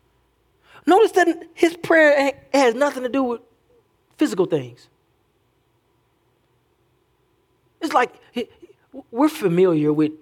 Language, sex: English, male